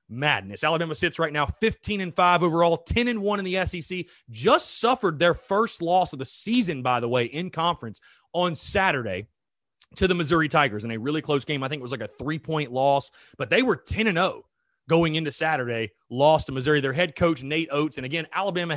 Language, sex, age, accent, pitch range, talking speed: English, male, 30-49, American, 140-185 Hz, 215 wpm